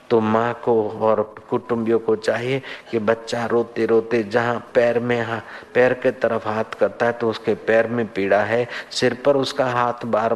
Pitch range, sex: 115-135 Hz, male